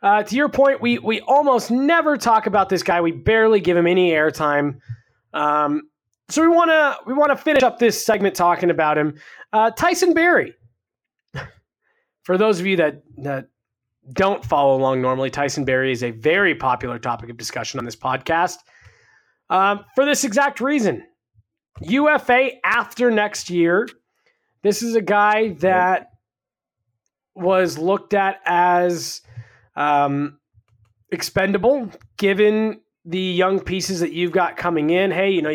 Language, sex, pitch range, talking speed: English, male, 155-240 Hz, 150 wpm